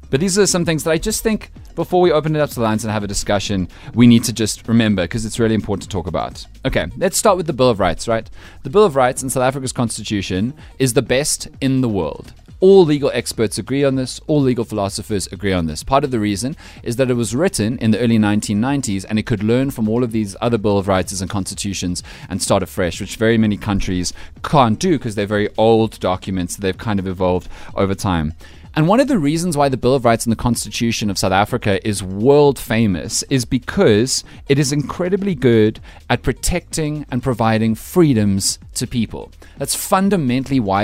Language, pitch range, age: English, 100-135 Hz, 30-49